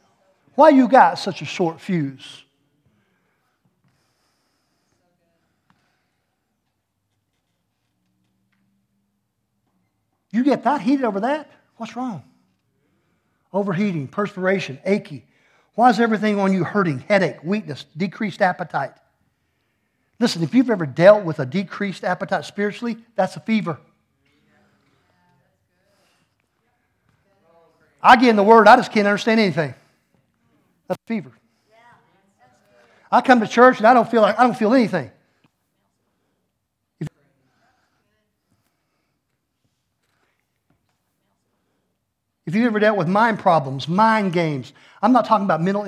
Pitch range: 145-210 Hz